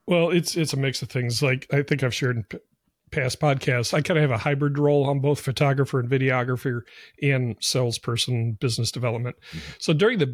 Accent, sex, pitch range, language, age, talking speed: American, male, 125-150 Hz, English, 40-59, 195 wpm